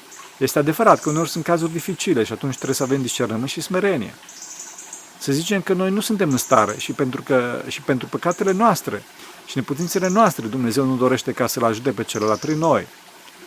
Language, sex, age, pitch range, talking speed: Romanian, male, 40-59, 130-175 Hz, 185 wpm